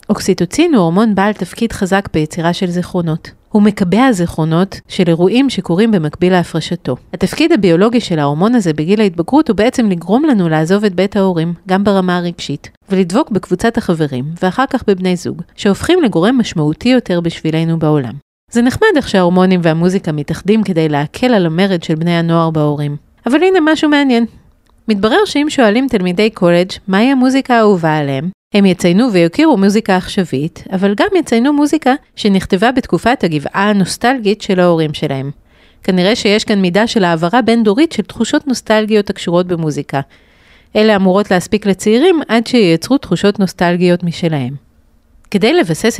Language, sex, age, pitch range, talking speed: Hebrew, female, 40-59, 165-225 Hz, 140 wpm